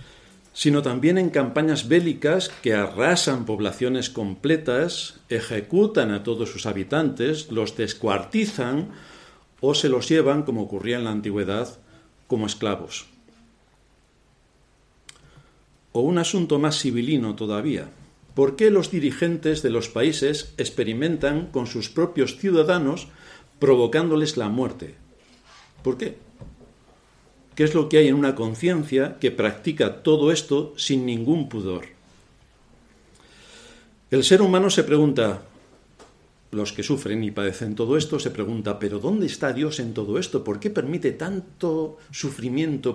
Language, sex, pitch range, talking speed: Spanish, male, 115-155 Hz, 125 wpm